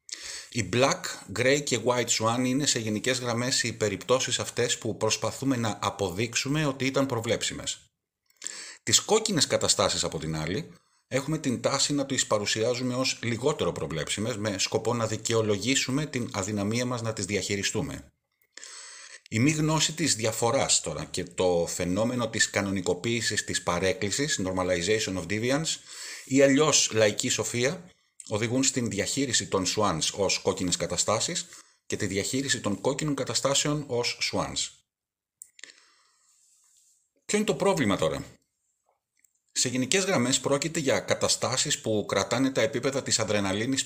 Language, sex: Greek, male